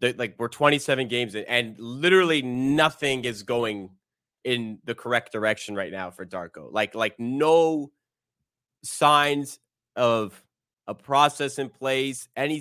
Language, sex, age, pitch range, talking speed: English, male, 20-39, 115-135 Hz, 130 wpm